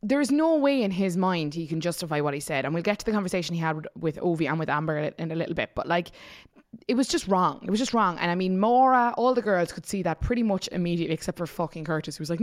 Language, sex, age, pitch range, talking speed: English, female, 20-39, 165-215 Hz, 290 wpm